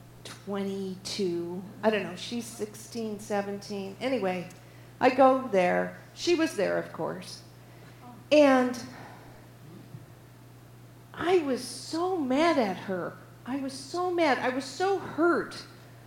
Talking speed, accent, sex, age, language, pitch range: 115 wpm, American, female, 50-69, English, 195-280 Hz